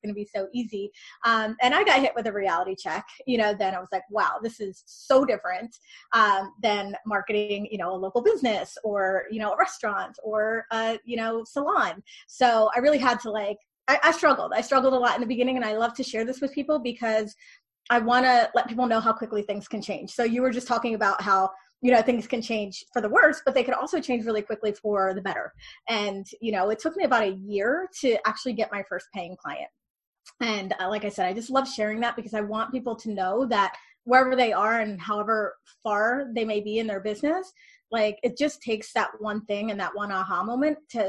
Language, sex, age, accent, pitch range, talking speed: English, female, 20-39, American, 210-255 Hz, 235 wpm